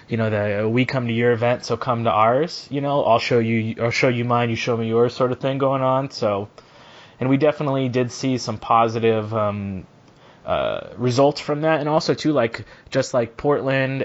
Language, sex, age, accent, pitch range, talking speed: English, male, 20-39, American, 115-135 Hz, 220 wpm